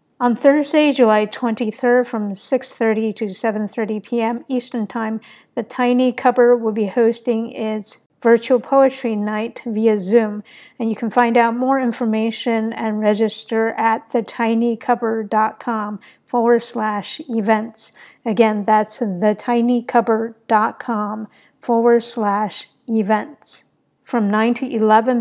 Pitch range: 220-245 Hz